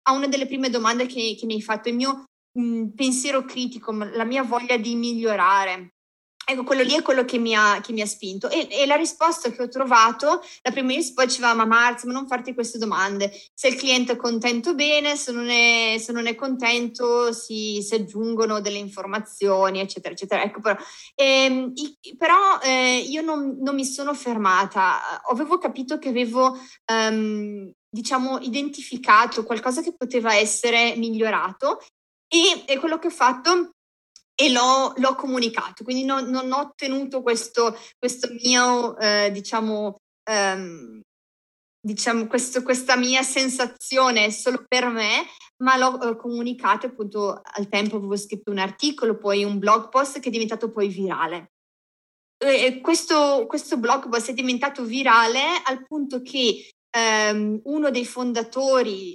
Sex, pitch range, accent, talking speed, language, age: female, 215-265 Hz, native, 160 wpm, Italian, 30-49